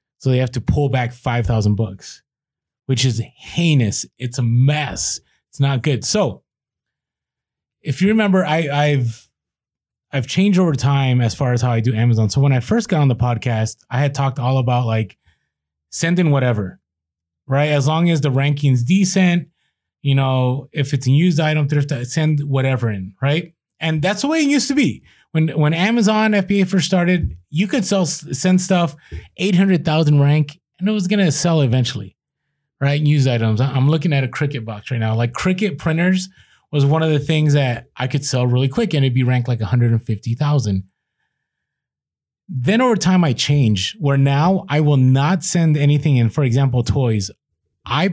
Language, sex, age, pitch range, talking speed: English, male, 30-49, 125-165 Hz, 180 wpm